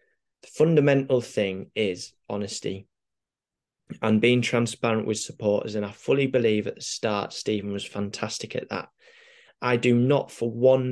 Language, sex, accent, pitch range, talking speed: English, male, British, 105-120 Hz, 145 wpm